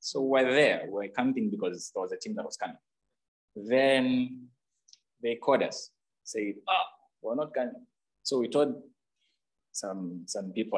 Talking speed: 155 wpm